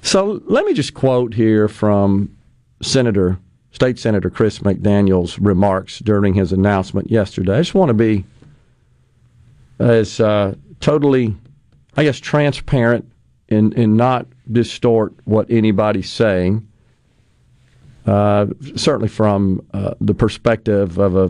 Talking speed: 115 wpm